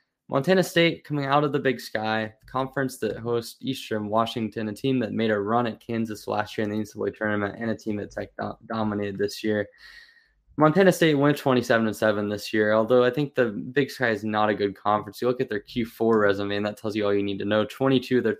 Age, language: 10-29, English